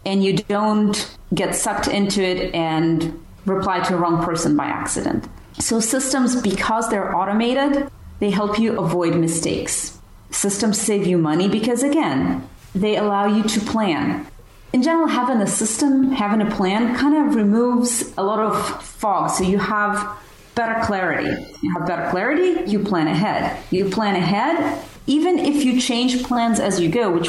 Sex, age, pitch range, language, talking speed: female, 30-49, 185-250 Hz, English, 165 wpm